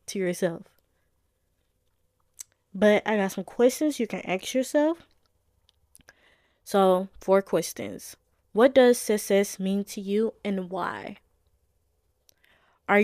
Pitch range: 180-215 Hz